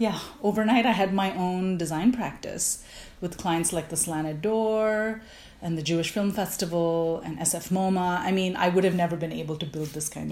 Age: 30-49